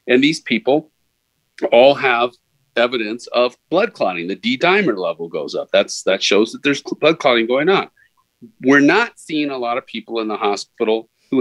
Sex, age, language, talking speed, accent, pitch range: male, 40-59, English, 180 wpm, American, 120-185 Hz